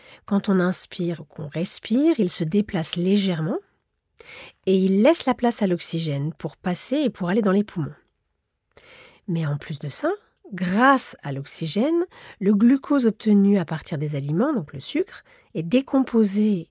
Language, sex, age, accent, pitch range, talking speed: French, female, 40-59, French, 170-245 Hz, 160 wpm